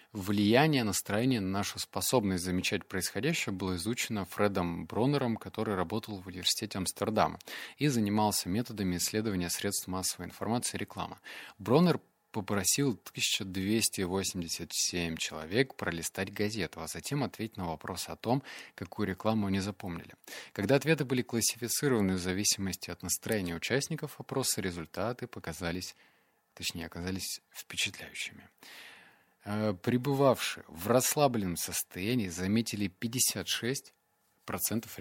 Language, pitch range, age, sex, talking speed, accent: Russian, 90-115 Hz, 20-39, male, 105 wpm, native